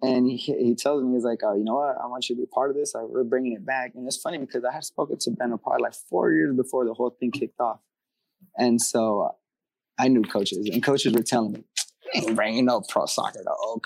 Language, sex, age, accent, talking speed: English, male, 20-39, American, 265 wpm